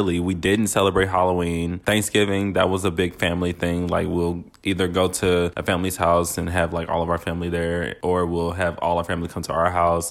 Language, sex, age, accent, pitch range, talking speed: English, male, 20-39, American, 90-100 Hz, 220 wpm